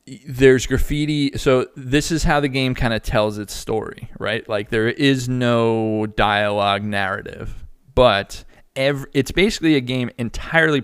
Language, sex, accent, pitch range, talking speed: English, male, American, 105-130 Hz, 150 wpm